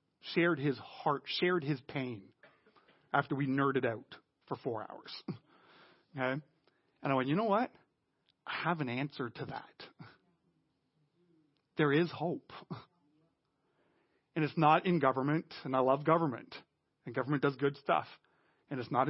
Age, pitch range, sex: 40-59, 135-170 Hz, male